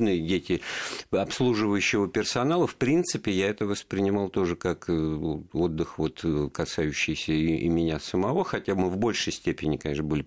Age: 50-69